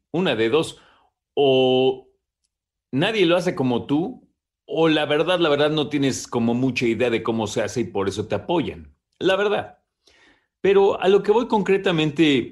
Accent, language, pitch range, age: Mexican, Spanish, 115-160 Hz, 40-59